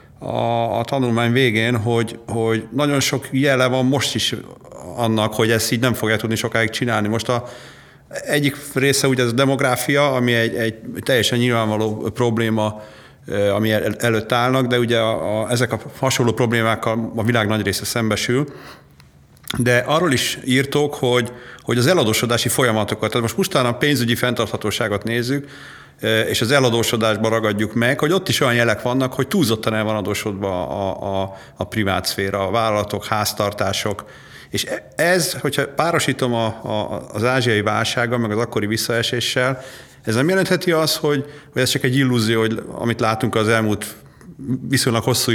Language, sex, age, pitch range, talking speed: Hungarian, male, 40-59, 110-125 Hz, 160 wpm